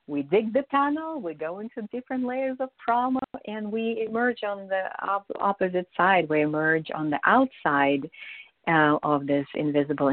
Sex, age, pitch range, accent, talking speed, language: female, 50-69, 150-205 Hz, American, 165 wpm, English